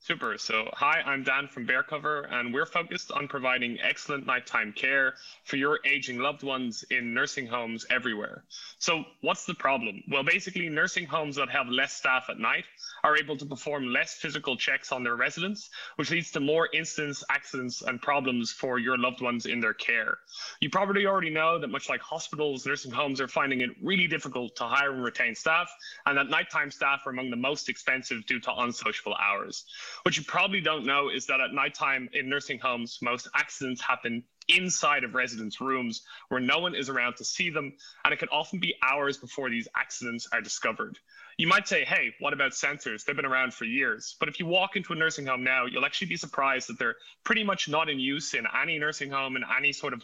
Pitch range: 130-170 Hz